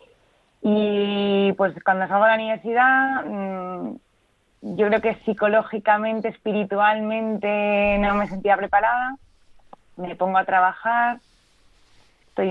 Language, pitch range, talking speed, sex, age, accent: Spanish, 185-220 Hz, 100 wpm, female, 20-39, Spanish